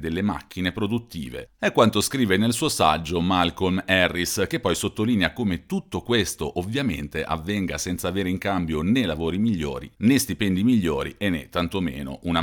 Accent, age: native, 40-59